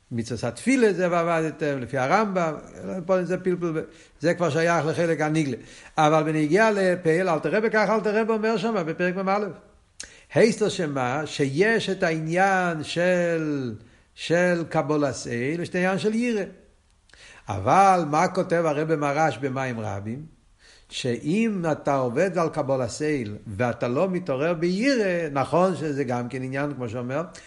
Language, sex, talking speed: Hebrew, male, 130 wpm